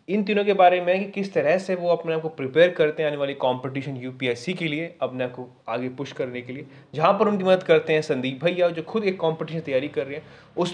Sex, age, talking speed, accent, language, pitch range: male, 20-39, 270 wpm, native, Hindi, 150-185 Hz